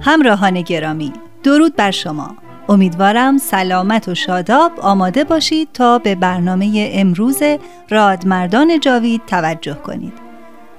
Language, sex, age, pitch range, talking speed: Persian, female, 30-49, 185-250 Hz, 105 wpm